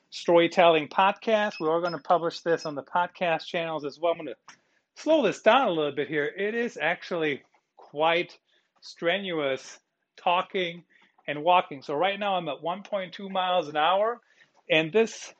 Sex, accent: male, American